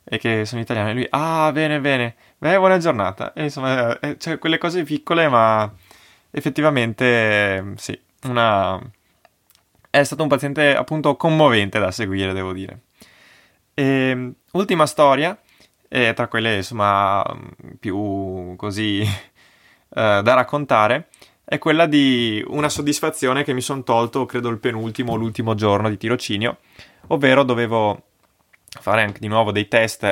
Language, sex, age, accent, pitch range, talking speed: Italian, male, 20-39, native, 100-135 Hz, 135 wpm